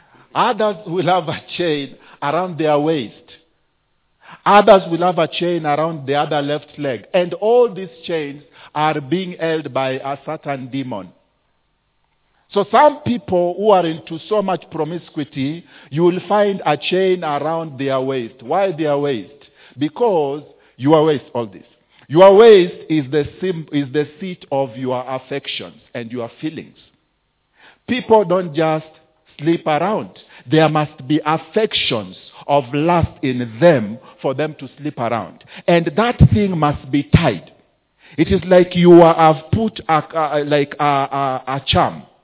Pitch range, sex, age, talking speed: 145-185 Hz, male, 50-69, 145 wpm